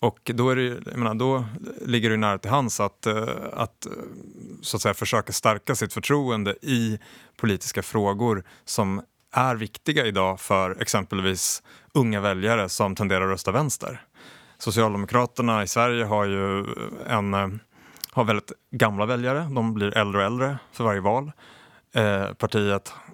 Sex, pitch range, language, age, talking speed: male, 105-125 Hz, Swedish, 30-49, 125 wpm